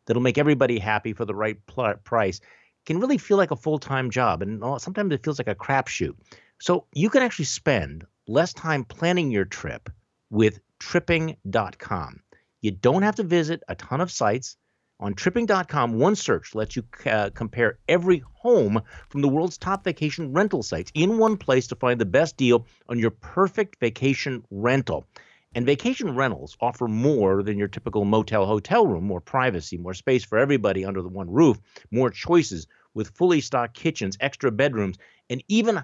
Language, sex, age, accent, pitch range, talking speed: English, male, 50-69, American, 105-155 Hz, 175 wpm